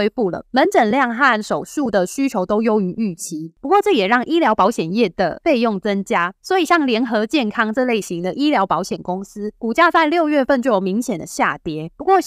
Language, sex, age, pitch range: Chinese, female, 20-39, 200-285 Hz